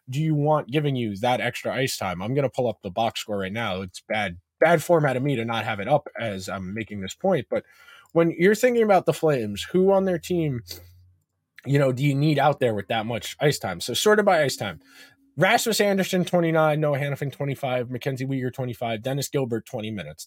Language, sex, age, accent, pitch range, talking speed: English, male, 20-39, American, 110-155 Hz, 230 wpm